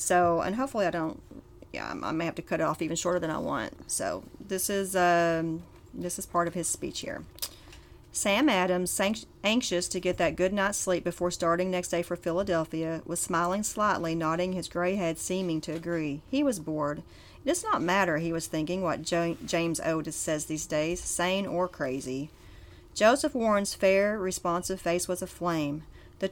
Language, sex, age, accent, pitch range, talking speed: English, female, 40-59, American, 160-195 Hz, 185 wpm